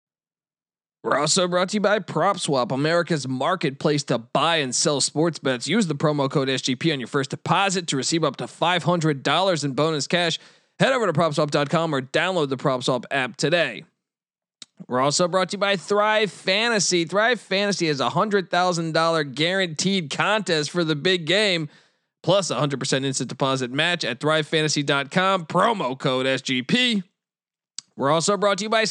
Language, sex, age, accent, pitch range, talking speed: English, male, 20-39, American, 145-185 Hz, 160 wpm